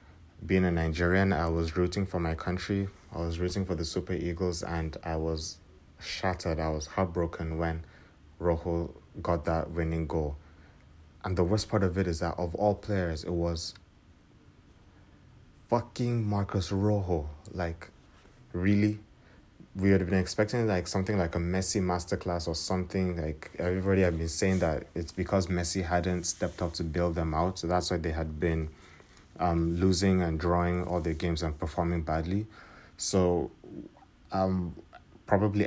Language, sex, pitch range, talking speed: English, male, 80-95 Hz, 160 wpm